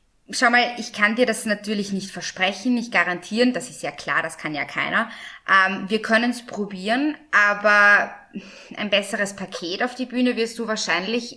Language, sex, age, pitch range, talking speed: German, female, 20-39, 185-225 Hz, 180 wpm